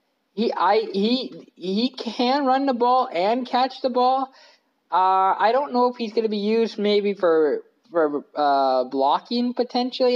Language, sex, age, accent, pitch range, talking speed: English, male, 20-39, American, 150-240 Hz, 165 wpm